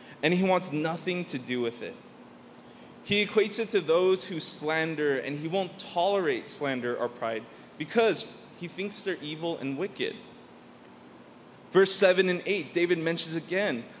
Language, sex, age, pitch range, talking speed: English, male, 20-39, 135-200 Hz, 155 wpm